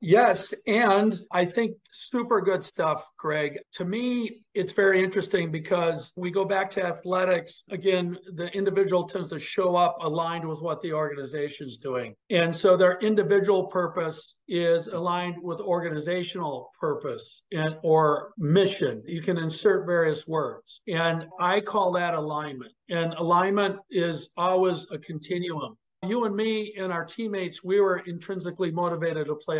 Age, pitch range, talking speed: 50-69, 165-195 Hz, 150 wpm